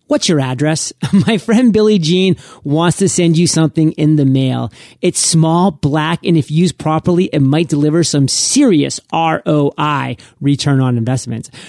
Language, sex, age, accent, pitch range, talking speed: English, male, 30-49, American, 145-180 Hz, 160 wpm